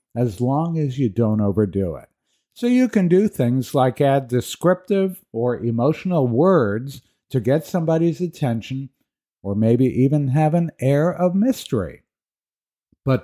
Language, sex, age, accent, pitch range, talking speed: English, male, 50-69, American, 115-155 Hz, 140 wpm